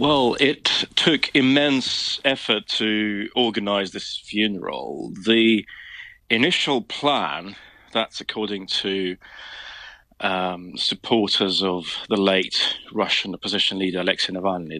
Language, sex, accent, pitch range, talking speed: English, male, British, 100-115 Hz, 100 wpm